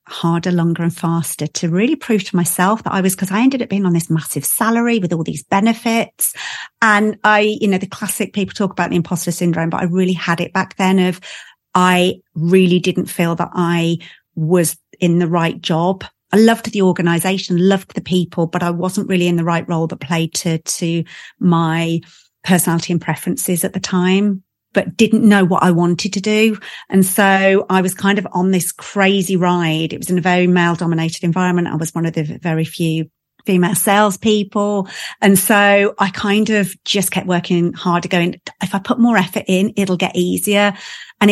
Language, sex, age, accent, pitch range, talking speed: English, female, 40-59, British, 175-200 Hz, 200 wpm